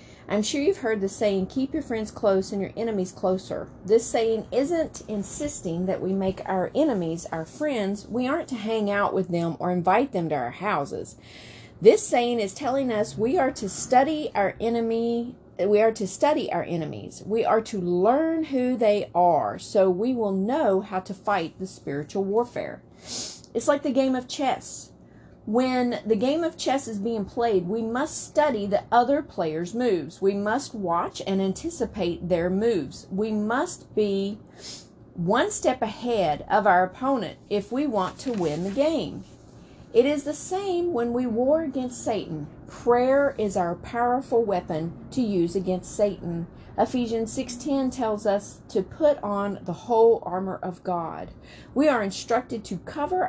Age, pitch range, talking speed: 40-59, 190-255 Hz, 170 wpm